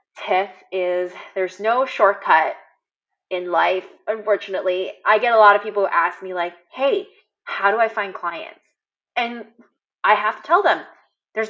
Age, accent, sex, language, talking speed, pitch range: 20-39, American, female, English, 160 wpm, 180-225 Hz